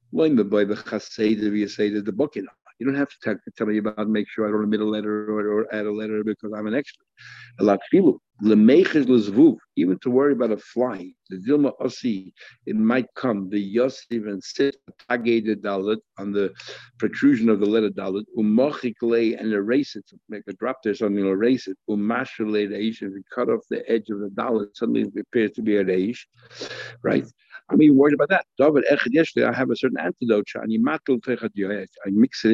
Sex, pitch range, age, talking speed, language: male, 105-130 Hz, 60-79, 160 wpm, English